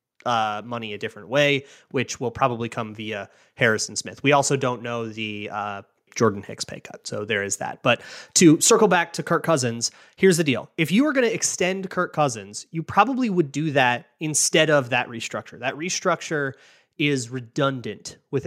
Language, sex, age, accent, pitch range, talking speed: English, male, 30-49, American, 125-170 Hz, 190 wpm